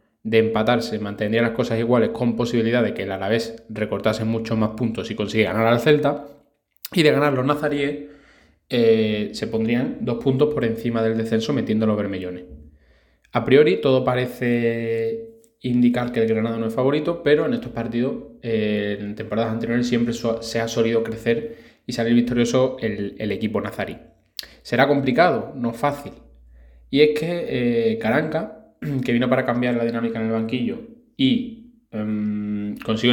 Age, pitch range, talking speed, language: 20-39, 110-145 Hz, 165 wpm, Spanish